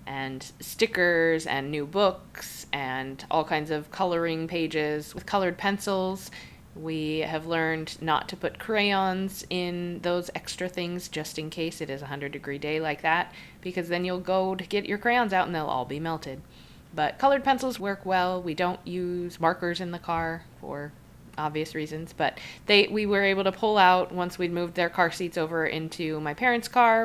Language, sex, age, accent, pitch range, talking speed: English, female, 20-39, American, 160-200 Hz, 185 wpm